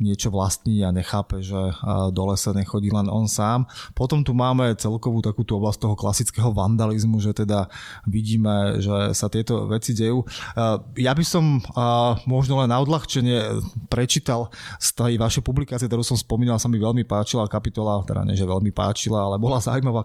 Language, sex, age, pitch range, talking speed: Slovak, male, 20-39, 105-125 Hz, 170 wpm